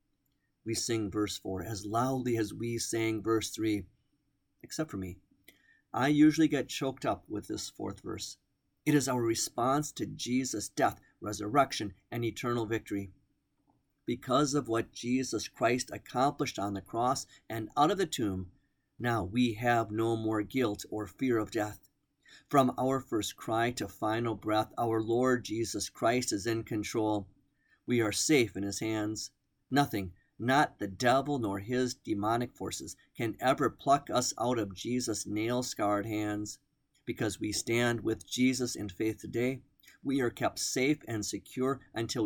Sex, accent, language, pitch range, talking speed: male, American, English, 105-130 Hz, 155 wpm